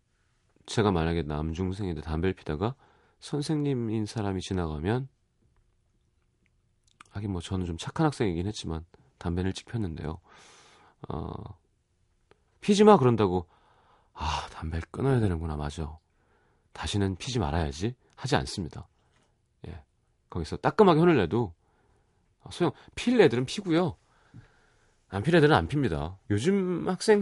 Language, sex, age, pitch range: Korean, male, 30-49, 85-135 Hz